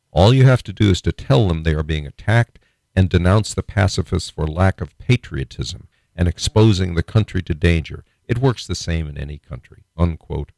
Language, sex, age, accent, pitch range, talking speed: English, male, 50-69, American, 80-105 Hz, 200 wpm